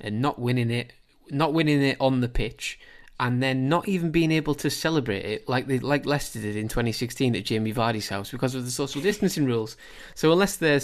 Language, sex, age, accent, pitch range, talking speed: English, male, 20-39, British, 110-135 Hz, 215 wpm